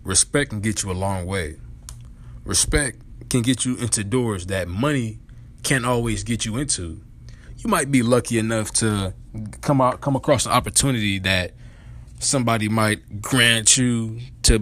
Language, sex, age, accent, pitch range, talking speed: English, male, 20-39, American, 100-130 Hz, 155 wpm